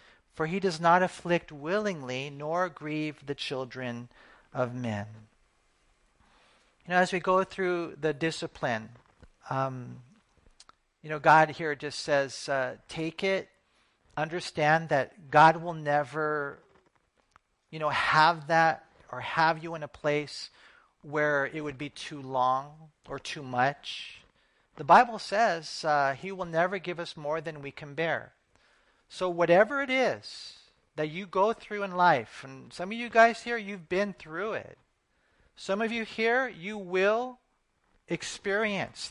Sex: male